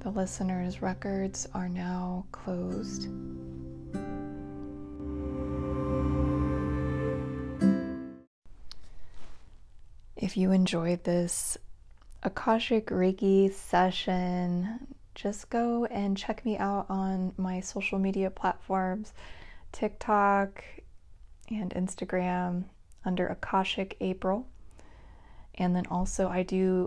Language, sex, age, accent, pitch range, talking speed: English, female, 20-39, American, 170-195 Hz, 80 wpm